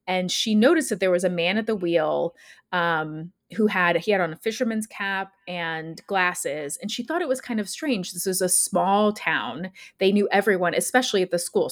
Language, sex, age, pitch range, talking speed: English, female, 30-49, 175-210 Hz, 215 wpm